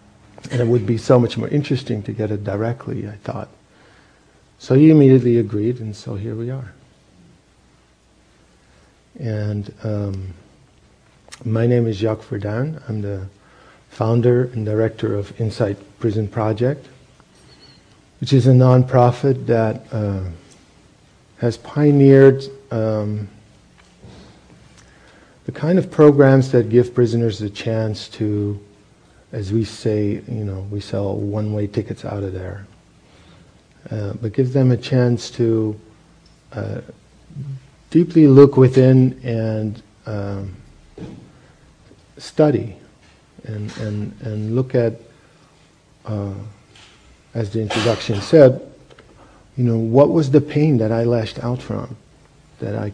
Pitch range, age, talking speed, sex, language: 105-130 Hz, 50-69, 120 wpm, male, English